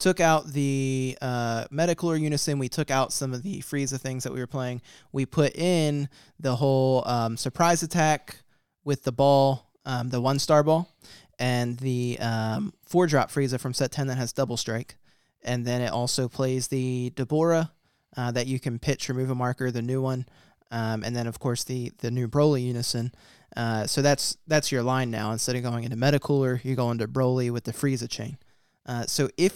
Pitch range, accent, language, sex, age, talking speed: 125-145 Hz, American, English, male, 20-39, 195 wpm